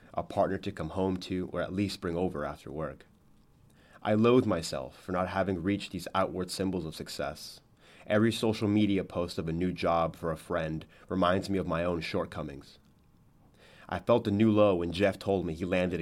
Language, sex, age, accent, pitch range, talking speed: English, male, 30-49, American, 85-100 Hz, 200 wpm